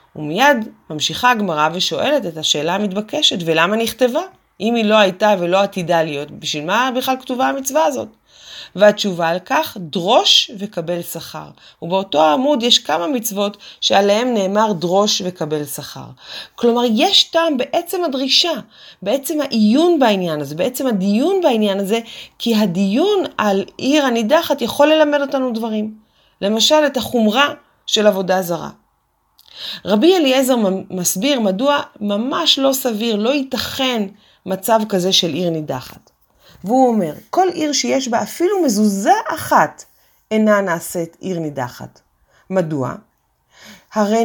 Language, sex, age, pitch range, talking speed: Hebrew, female, 30-49, 185-270 Hz, 130 wpm